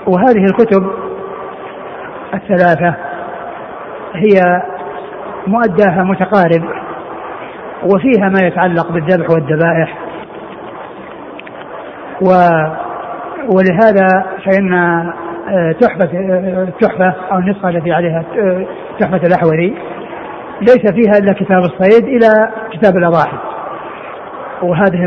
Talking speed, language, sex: 70 wpm, Arabic, male